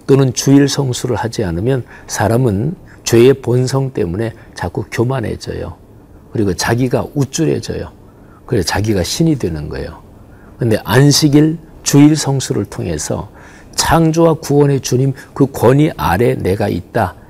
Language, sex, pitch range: Korean, male, 105-150 Hz